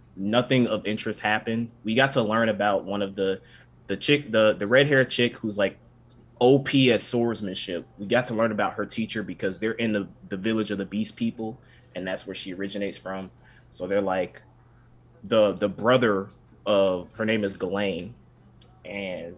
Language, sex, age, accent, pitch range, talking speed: English, male, 20-39, American, 100-120 Hz, 180 wpm